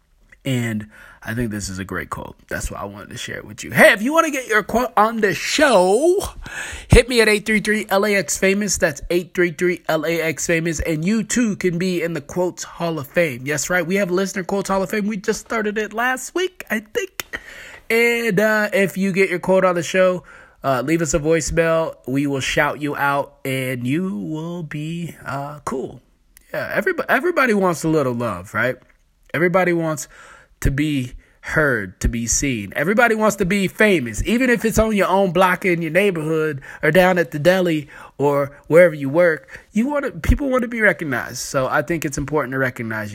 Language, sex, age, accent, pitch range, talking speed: English, male, 20-39, American, 145-215 Hz, 200 wpm